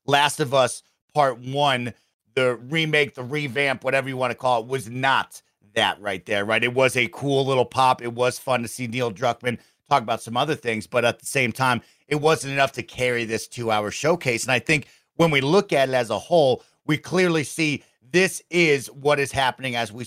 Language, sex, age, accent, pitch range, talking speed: English, male, 40-59, American, 120-150 Hz, 220 wpm